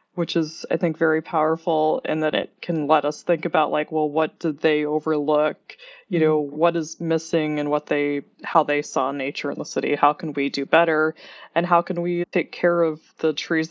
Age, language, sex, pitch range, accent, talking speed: 20-39, English, female, 150-175 Hz, American, 215 wpm